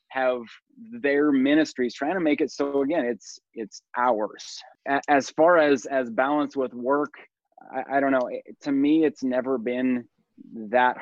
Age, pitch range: 20-39, 120-140 Hz